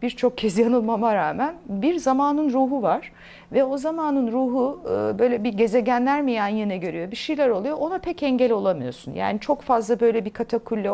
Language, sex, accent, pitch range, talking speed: Turkish, female, native, 180-275 Hz, 175 wpm